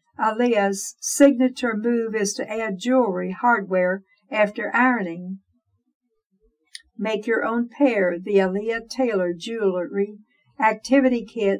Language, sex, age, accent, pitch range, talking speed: English, female, 60-79, American, 195-255 Hz, 105 wpm